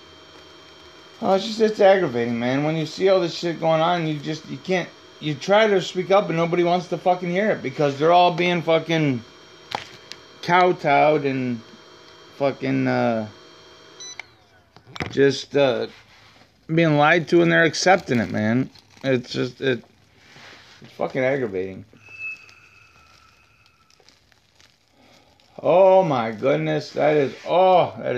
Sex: male